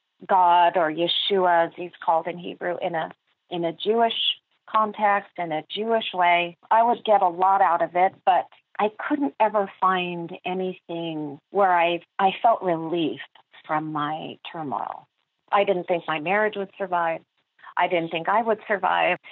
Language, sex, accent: English, female, American